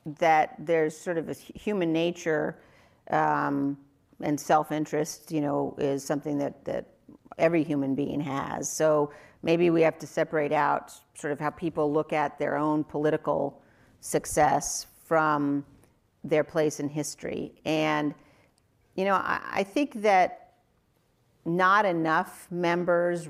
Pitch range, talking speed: 145-165 Hz, 135 wpm